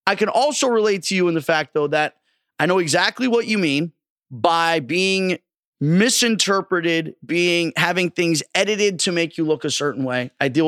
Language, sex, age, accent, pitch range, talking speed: English, male, 30-49, American, 145-180 Hz, 185 wpm